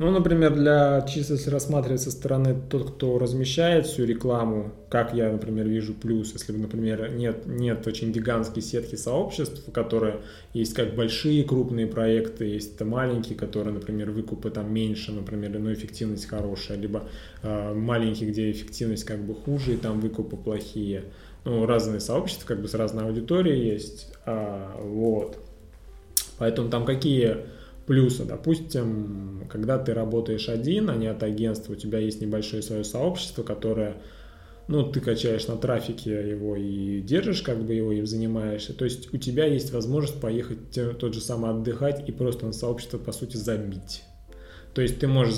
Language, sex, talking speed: Russian, male, 160 wpm